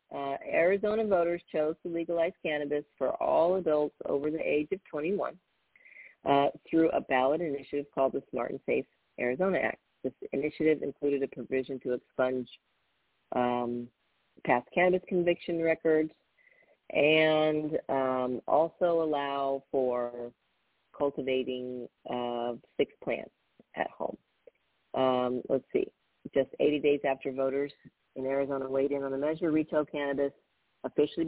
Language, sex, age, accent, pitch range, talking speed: English, female, 40-59, American, 135-165 Hz, 130 wpm